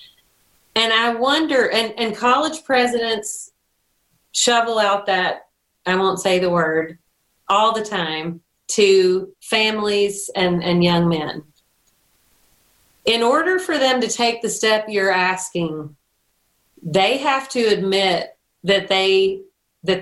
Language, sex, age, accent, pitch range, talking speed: English, female, 40-59, American, 180-240 Hz, 125 wpm